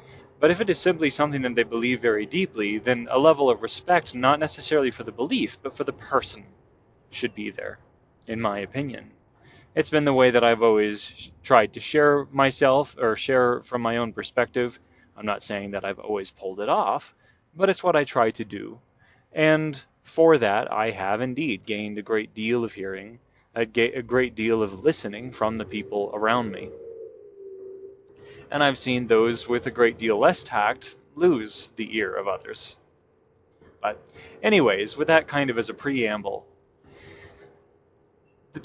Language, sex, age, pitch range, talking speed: English, male, 20-39, 110-145 Hz, 170 wpm